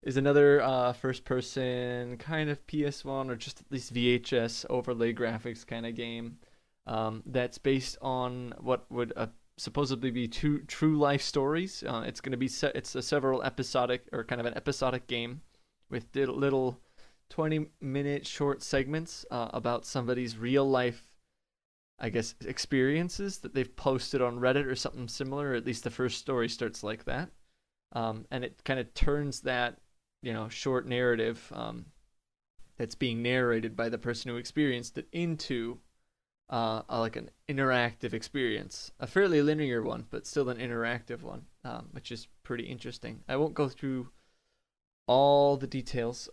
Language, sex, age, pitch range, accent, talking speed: English, male, 20-39, 120-140 Hz, American, 165 wpm